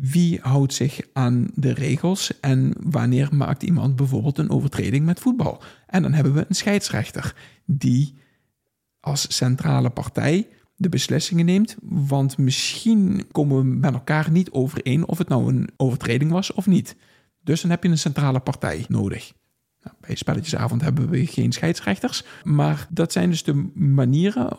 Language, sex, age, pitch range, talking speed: Dutch, male, 50-69, 130-170 Hz, 155 wpm